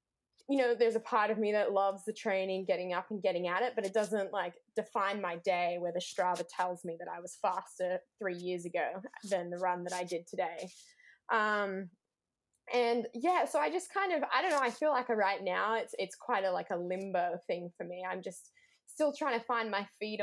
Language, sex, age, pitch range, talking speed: English, female, 10-29, 180-235 Hz, 225 wpm